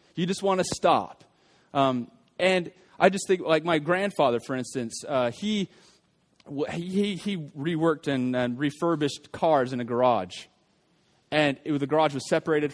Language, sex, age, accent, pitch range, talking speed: English, male, 20-39, American, 145-175 Hz, 155 wpm